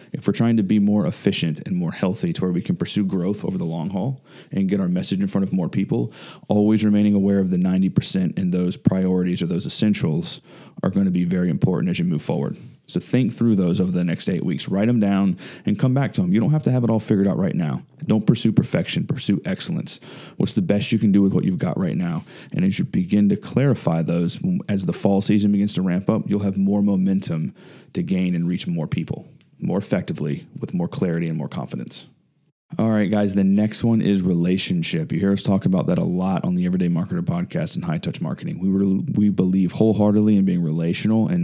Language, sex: English, male